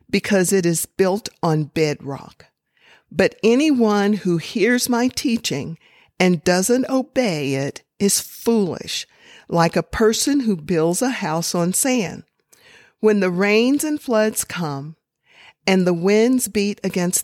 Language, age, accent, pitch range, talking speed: English, 50-69, American, 165-220 Hz, 130 wpm